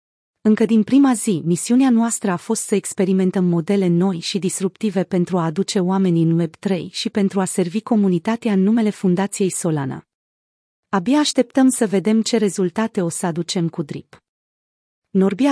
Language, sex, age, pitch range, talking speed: Romanian, female, 30-49, 175-220 Hz, 160 wpm